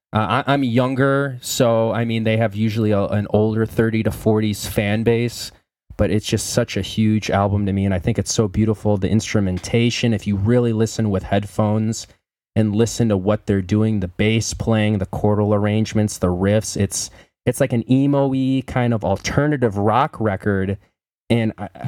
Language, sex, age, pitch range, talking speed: English, male, 20-39, 105-125 Hz, 185 wpm